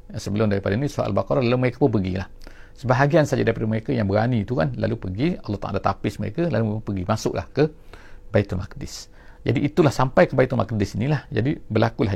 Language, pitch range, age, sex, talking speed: English, 100-130 Hz, 50-69, male, 190 wpm